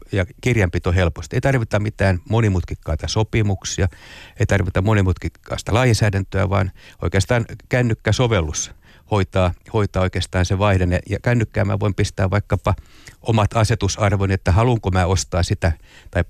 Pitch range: 90-110 Hz